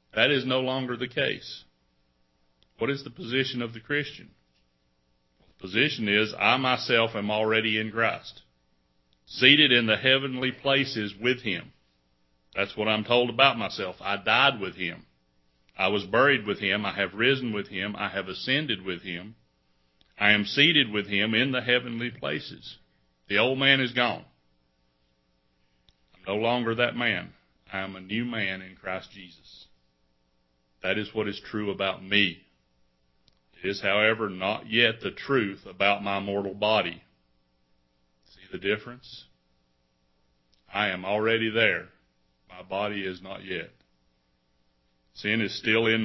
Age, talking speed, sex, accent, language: 60-79, 150 wpm, male, American, English